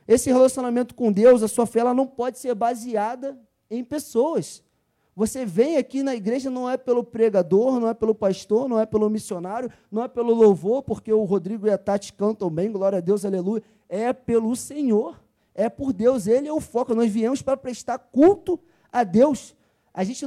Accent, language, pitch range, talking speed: Brazilian, Portuguese, 210-255 Hz, 195 wpm